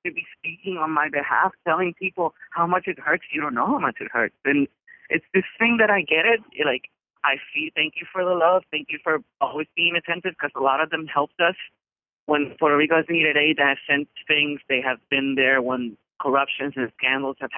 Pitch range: 135-170 Hz